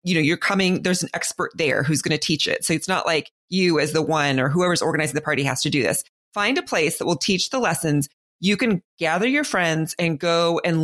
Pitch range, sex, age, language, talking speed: 170-230 Hz, female, 30-49, English, 250 wpm